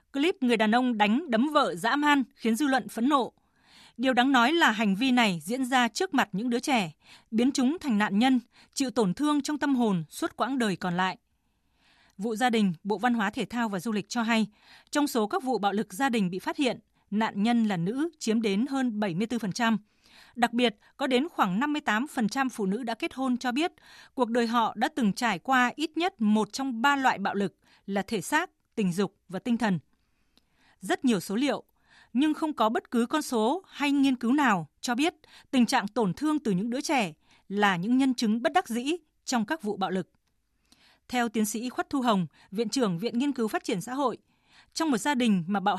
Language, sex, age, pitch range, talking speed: Vietnamese, female, 20-39, 210-270 Hz, 225 wpm